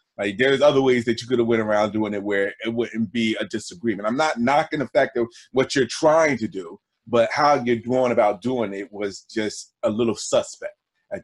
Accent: American